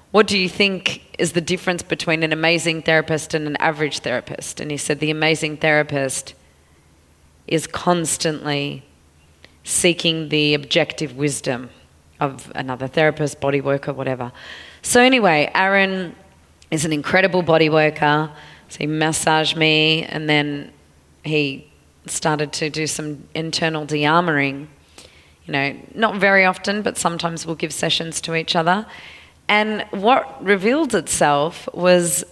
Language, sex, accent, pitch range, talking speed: English, female, Australian, 140-180 Hz, 135 wpm